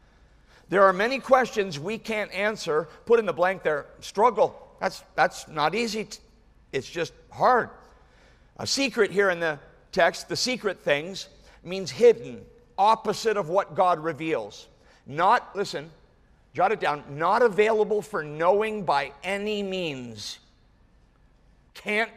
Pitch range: 165-220 Hz